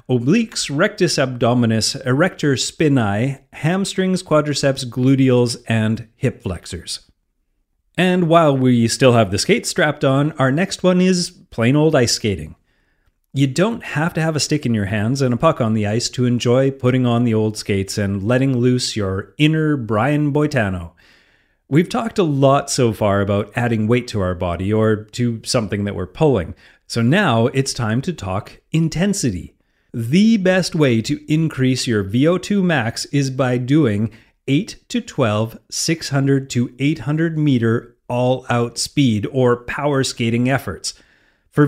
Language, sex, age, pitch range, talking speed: English, male, 30-49, 110-150 Hz, 155 wpm